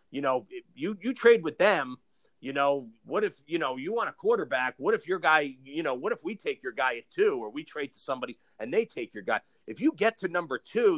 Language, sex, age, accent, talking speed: English, male, 30-49, American, 255 wpm